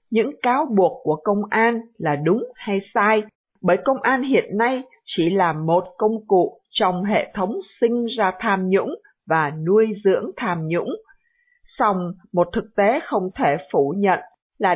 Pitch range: 180-245 Hz